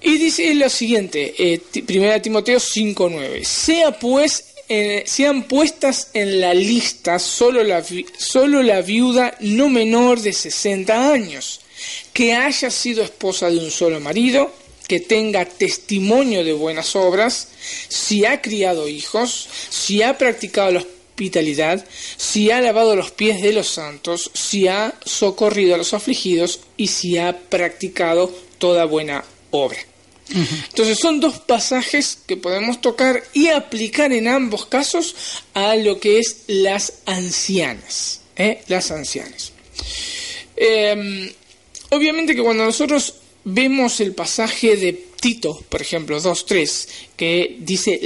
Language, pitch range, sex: Spanish, 180-250 Hz, male